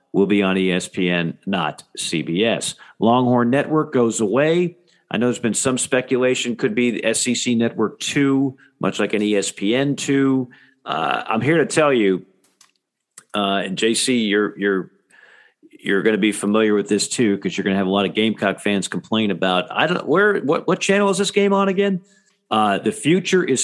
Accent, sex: American, male